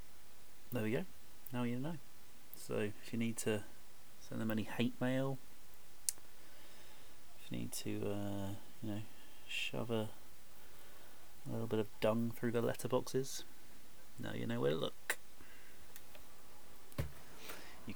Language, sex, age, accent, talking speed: English, male, 30-49, British, 135 wpm